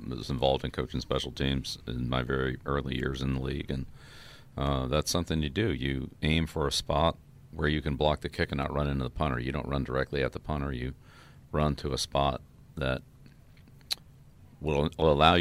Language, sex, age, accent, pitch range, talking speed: English, male, 40-59, American, 65-75 Hz, 205 wpm